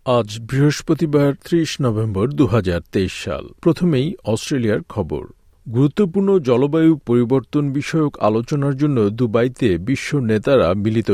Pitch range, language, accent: 110-145 Hz, Bengali, native